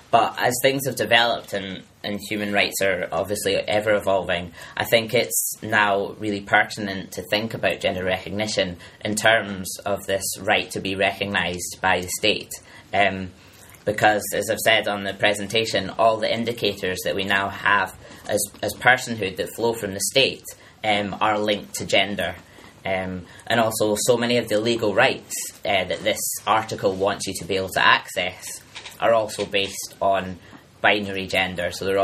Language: English